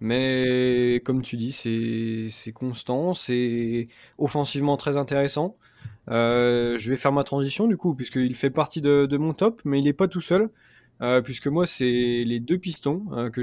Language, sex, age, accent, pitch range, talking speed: French, male, 20-39, French, 125-145 Hz, 185 wpm